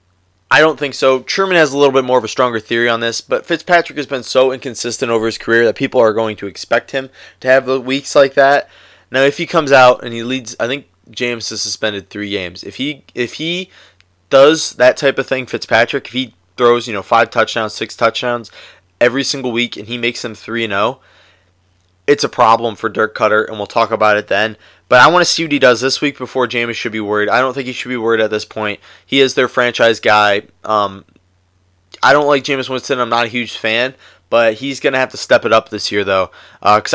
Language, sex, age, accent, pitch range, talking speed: English, male, 20-39, American, 105-135 Hz, 240 wpm